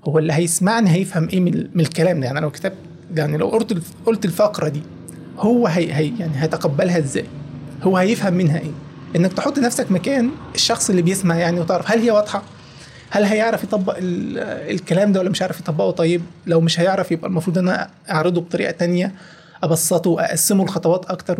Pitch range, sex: 170-220 Hz, male